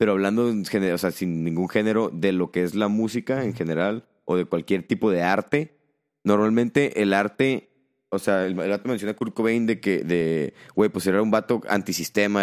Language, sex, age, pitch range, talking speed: Spanish, male, 30-49, 90-110 Hz, 200 wpm